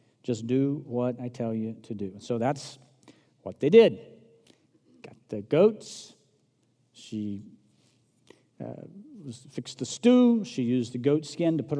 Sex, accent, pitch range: male, American, 125-155 Hz